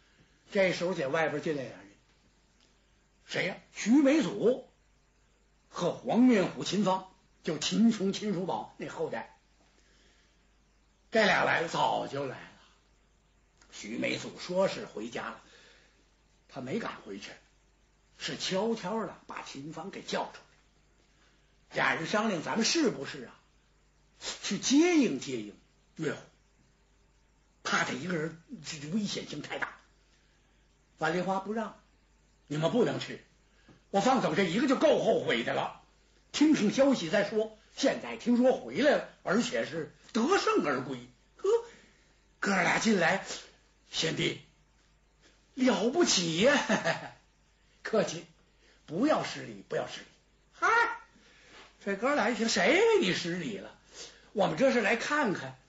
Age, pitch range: 60-79, 175-270 Hz